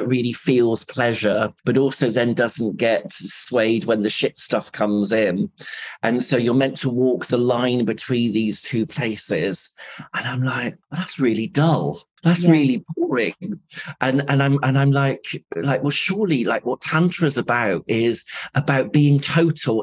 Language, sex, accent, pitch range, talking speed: English, male, British, 115-140 Hz, 165 wpm